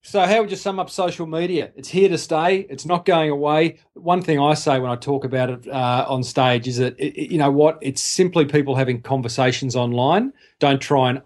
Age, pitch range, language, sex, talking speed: 40-59, 125-155 Hz, English, male, 235 wpm